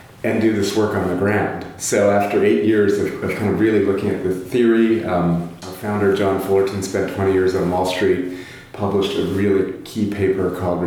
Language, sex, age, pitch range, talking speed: English, male, 30-49, 90-105 Hz, 205 wpm